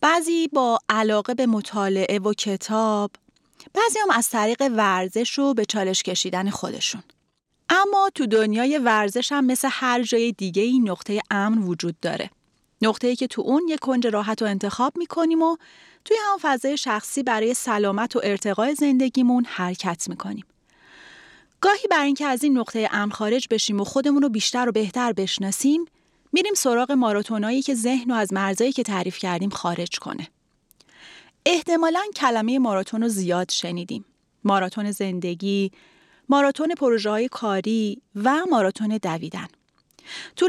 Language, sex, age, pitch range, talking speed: Persian, female, 30-49, 205-285 Hz, 150 wpm